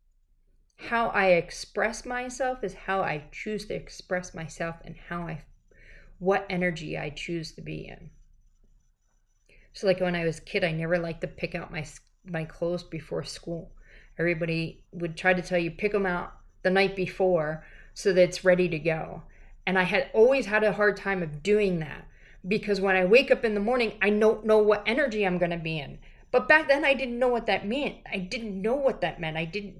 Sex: female